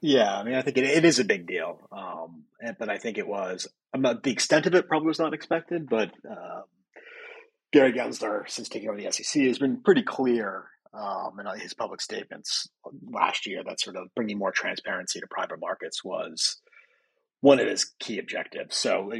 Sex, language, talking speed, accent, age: male, English, 200 wpm, American, 30-49